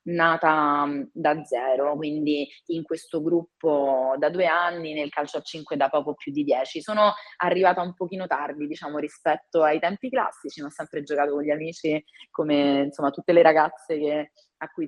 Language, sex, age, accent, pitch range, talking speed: Italian, female, 20-39, native, 140-160 Hz, 175 wpm